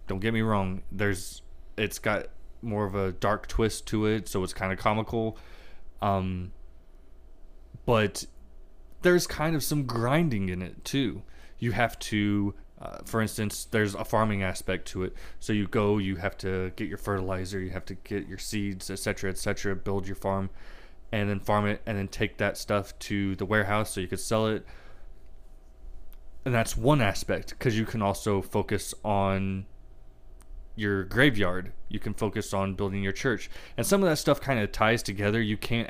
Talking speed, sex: 180 wpm, male